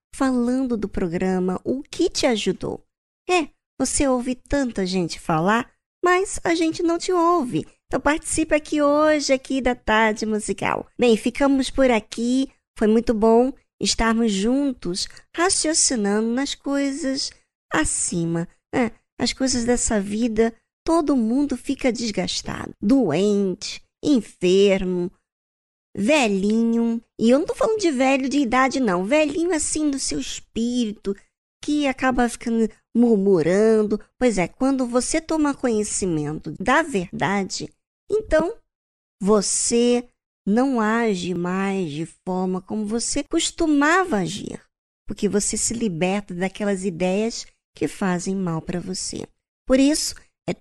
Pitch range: 205-280 Hz